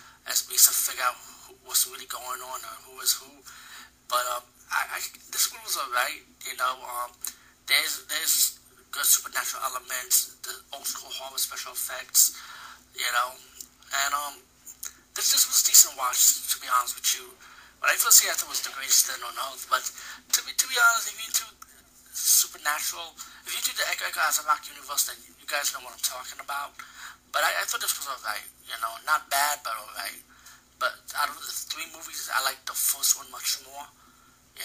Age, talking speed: 30-49, 205 wpm